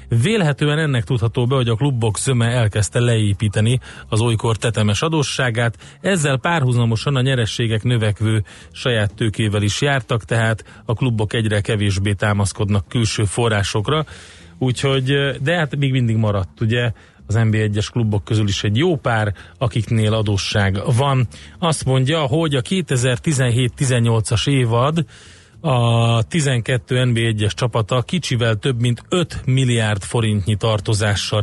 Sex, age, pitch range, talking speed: male, 30-49, 105-130 Hz, 125 wpm